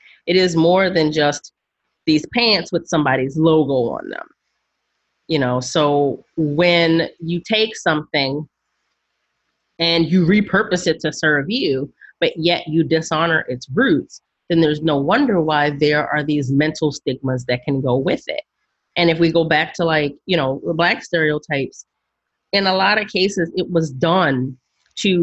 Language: English